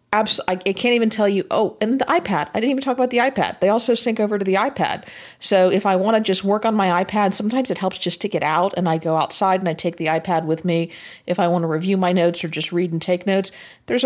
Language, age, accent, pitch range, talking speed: English, 50-69, American, 175-225 Hz, 280 wpm